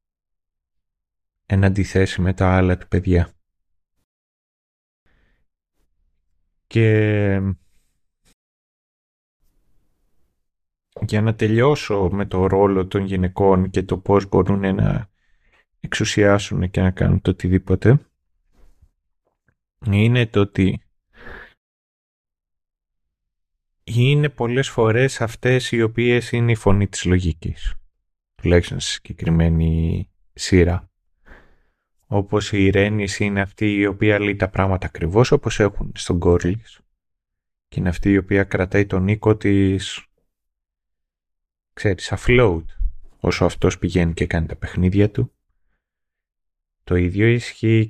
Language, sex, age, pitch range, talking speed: Greek, male, 30-49, 85-105 Hz, 100 wpm